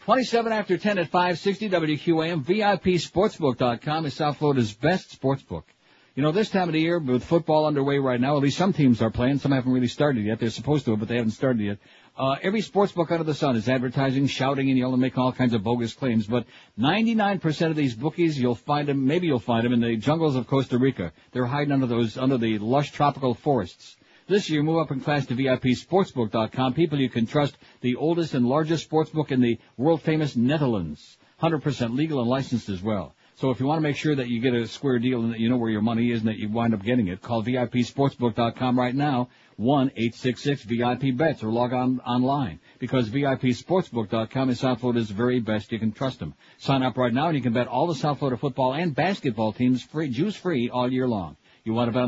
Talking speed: 225 wpm